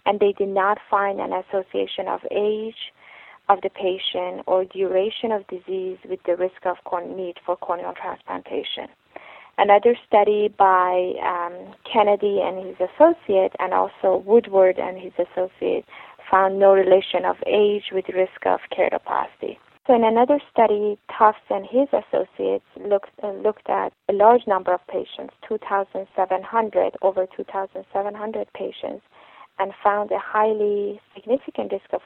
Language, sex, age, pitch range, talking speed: English, female, 20-39, 185-220 Hz, 140 wpm